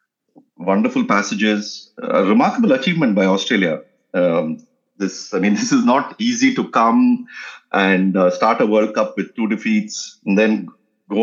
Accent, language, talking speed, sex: Indian, English, 155 wpm, male